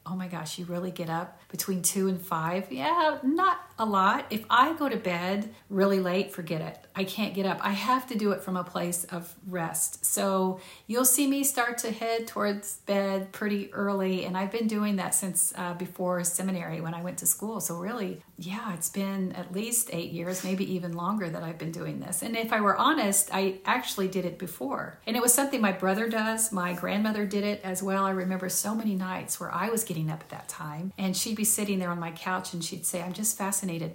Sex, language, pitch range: female, English, 180-205 Hz